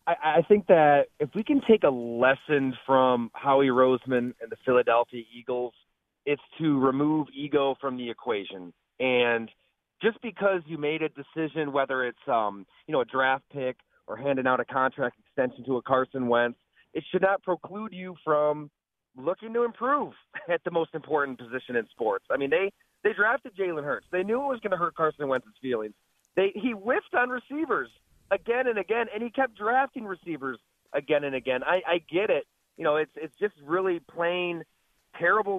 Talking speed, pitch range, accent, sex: 185 wpm, 135-195 Hz, American, male